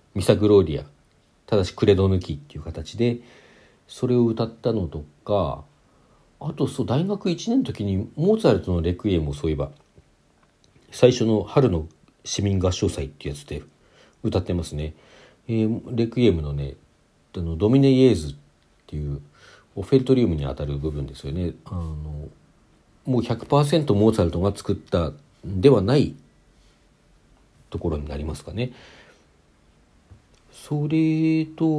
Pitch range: 80-130 Hz